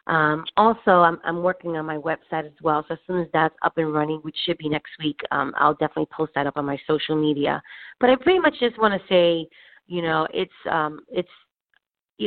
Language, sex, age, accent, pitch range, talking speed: English, female, 30-49, American, 155-180 Hz, 230 wpm